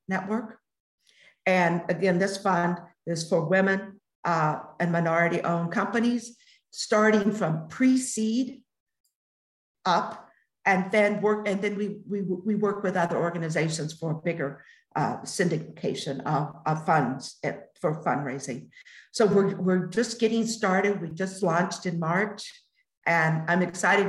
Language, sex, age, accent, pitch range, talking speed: English, female, 50-69, American, 175-215 Hz, 130 wpm